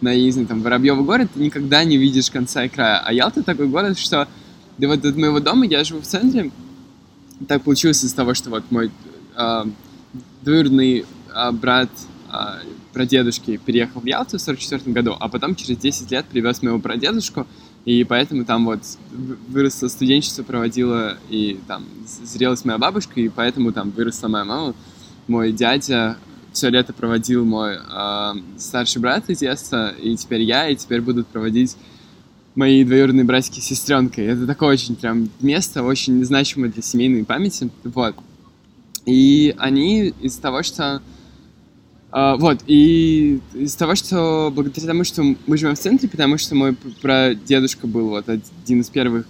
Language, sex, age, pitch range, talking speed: Russian, male, 10-29, 115-140 Hz, 160 wpm